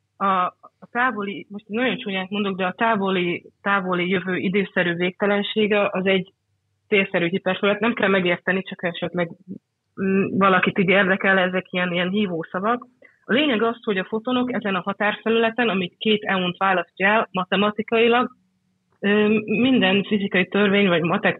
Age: 30-49